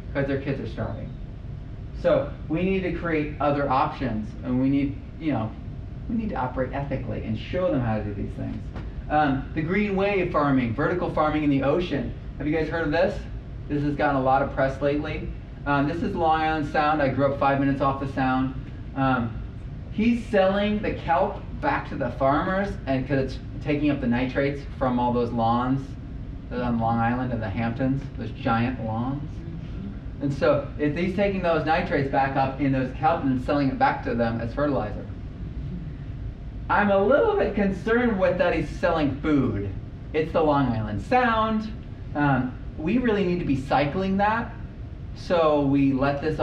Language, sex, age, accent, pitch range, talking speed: English, male, 30-49, American, 120-150 Hz, 190 wpm